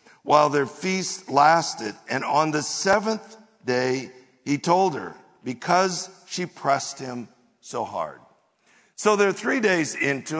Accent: American